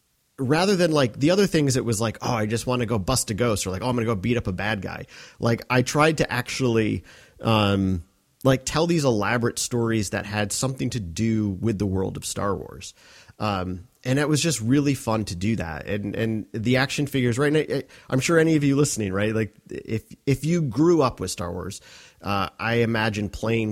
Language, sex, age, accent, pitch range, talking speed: English, male, 30-49, American, 100-130 Hz, 225 wpm